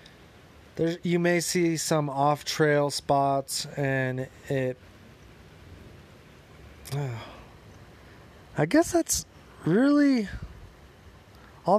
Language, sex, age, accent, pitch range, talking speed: English, male, 20-39, American, 125-150 Hz, 80 wpm